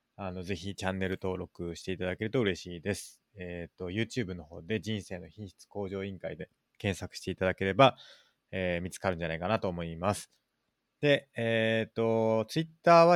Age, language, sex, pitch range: 20-39, Japanese, male, 90-115 Hz